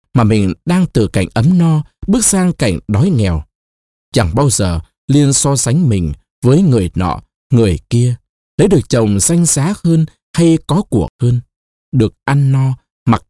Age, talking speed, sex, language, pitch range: 20-39, 170 wpm, male, Vietnamese, 95-155 Hz